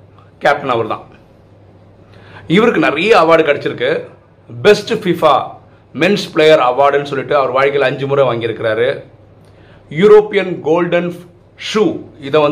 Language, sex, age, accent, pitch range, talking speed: Tamil, male, 40-59, native, 105-160 Hz, 75 wpm